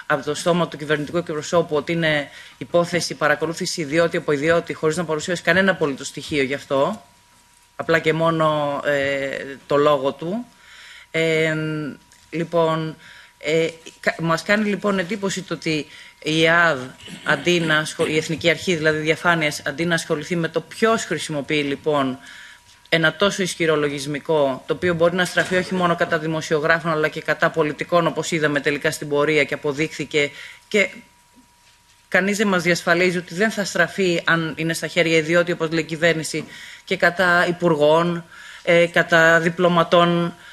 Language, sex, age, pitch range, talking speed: Greek, female, 20-39, 150-185 Hz, 150 wpm